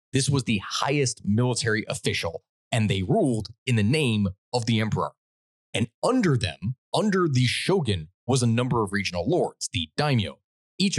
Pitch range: 95-125 Hz